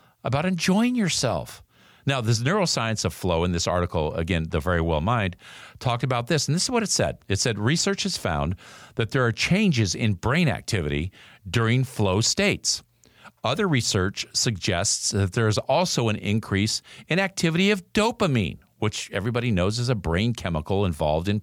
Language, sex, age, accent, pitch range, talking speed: English, male, 50-69, American, 100-135 Hz, 175 wpm